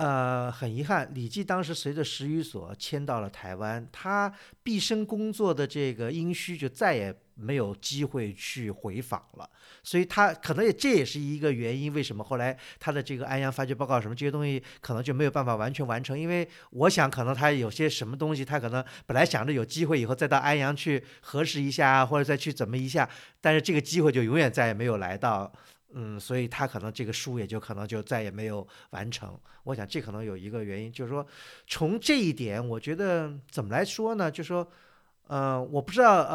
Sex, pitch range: male, 115-155 Hz